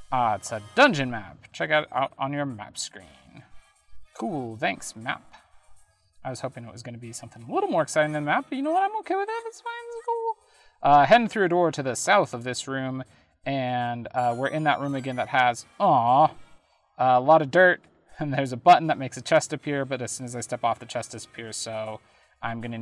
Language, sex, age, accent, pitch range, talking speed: English, male, 30-49, American, 115-160 Hz, 230 wpm